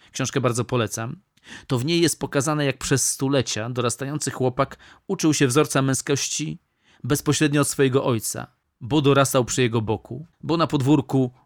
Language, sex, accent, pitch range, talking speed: Polish, male, native, 125-145 Hz, 150 wpm